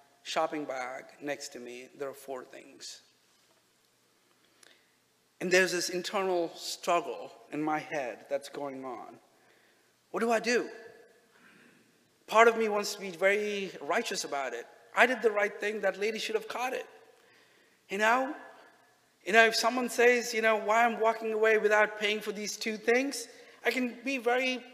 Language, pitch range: English, 155-225 Hz